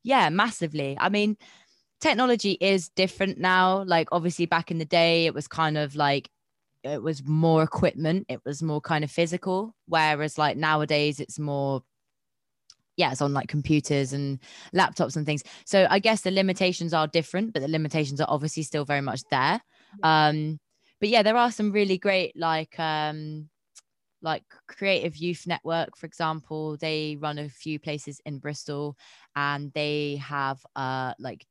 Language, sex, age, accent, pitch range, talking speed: English, female, 20-39, British, 140-170 Hz, 165 wpm